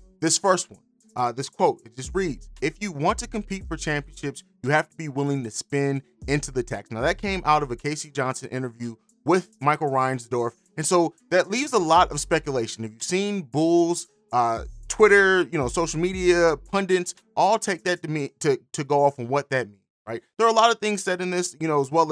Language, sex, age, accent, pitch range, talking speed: English, male, 30-49, American, 140-185 Hz, 230 wpm